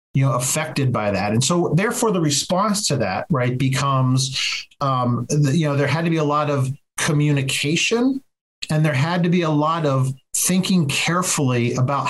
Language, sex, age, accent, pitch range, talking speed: English, male, 40-59, American, 130-155 Hz, 180 wpm